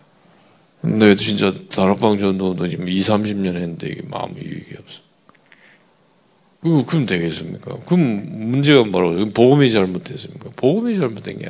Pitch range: 100-165 Hz